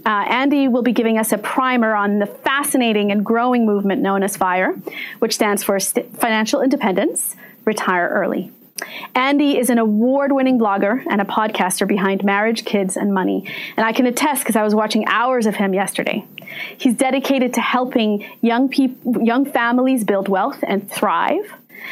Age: 30-49